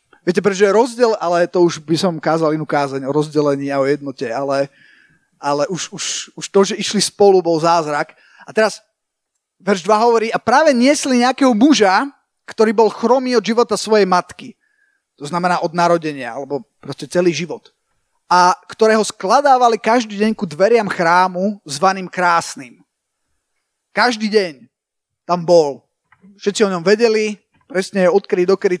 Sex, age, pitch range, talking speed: male, 30-49, 170-235 Hz, 155 wpm